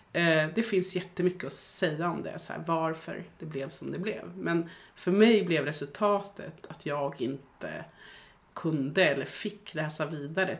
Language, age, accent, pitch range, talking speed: Swedish, 30-49, native, 160-200 Hz, 145 wpm